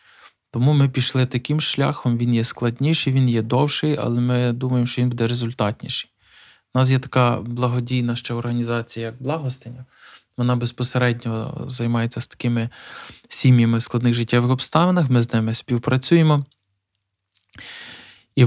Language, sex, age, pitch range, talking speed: Ukrainian, male, 20-39, 115-125 Hz, 135 wpm